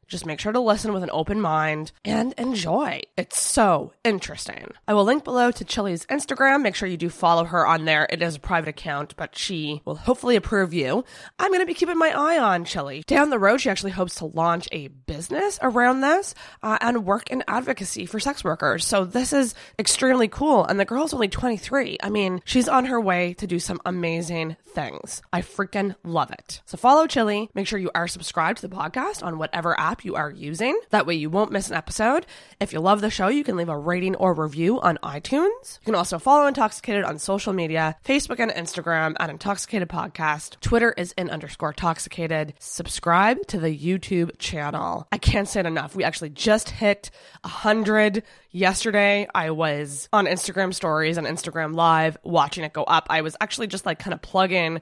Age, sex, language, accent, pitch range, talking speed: 20-39, female, English, American, 160-225 Hz, 205 wpm